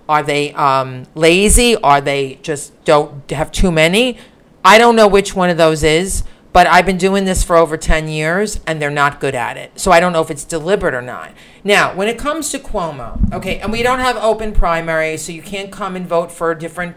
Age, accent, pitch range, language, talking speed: 40-59, American, 160-210 Hz, English, 230 wpm